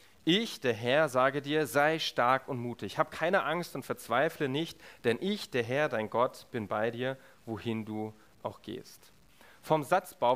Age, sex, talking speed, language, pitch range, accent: 30-49, male, 175 wpm, German, 125-170 Hz, German